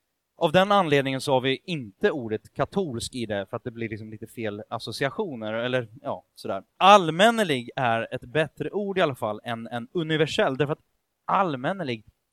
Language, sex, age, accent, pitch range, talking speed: Swedish, male, 30-49, native, 110-155 Hz, 175 wpm